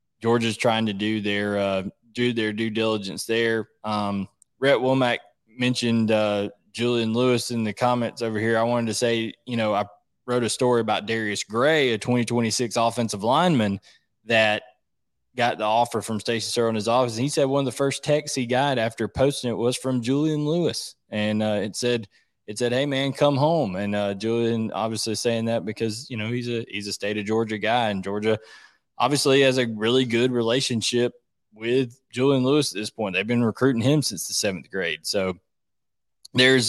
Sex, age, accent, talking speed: male, 20-39, American, 195 wpm